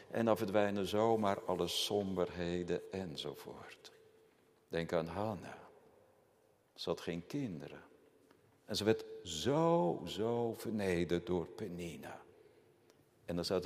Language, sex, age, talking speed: Dutch, male, 60-79, 110 wpm